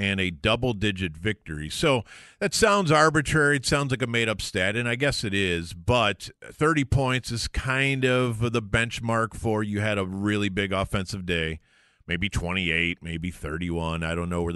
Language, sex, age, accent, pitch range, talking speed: English, male, 40-59, American, 95-130 Hz, 175 wpm